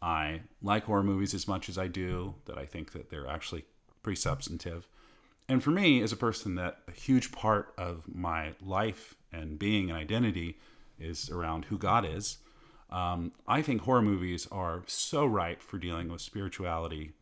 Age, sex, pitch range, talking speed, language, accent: 40-59, male, 85-110 Hz, 180 wpm, English, American